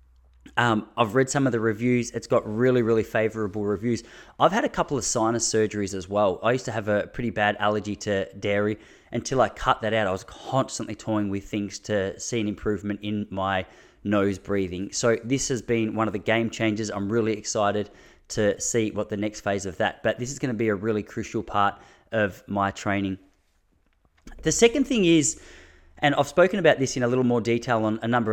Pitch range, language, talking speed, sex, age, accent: 110-135 Hz, English, 215 wpm, male, 20-39, Australian